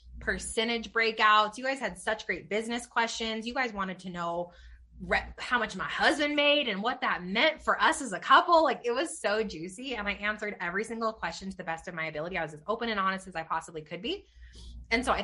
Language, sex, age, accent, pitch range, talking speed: English, female, 20-39, American, 170-230 Hz, 230 wpm